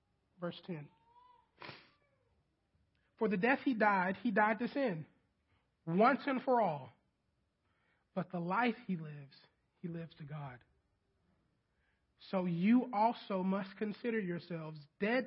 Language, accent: English, American